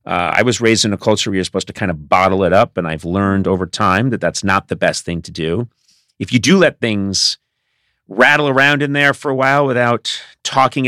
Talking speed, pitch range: 235 wpm, 90-120 Hz